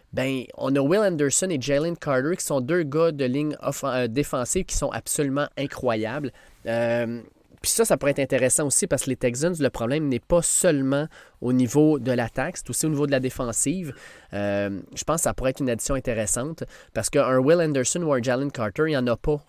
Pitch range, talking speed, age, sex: 125-150 Hz, 220 wpm, 20-39, male